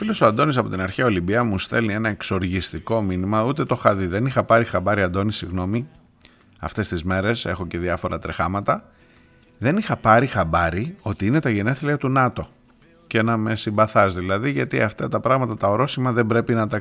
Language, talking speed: Greek, 195 wpm